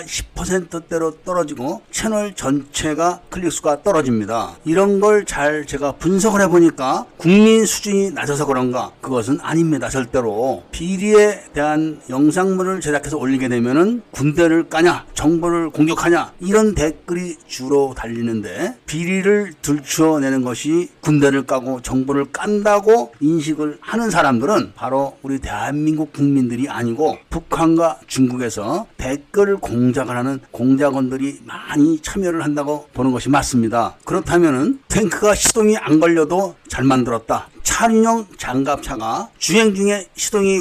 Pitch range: 140-195 Hz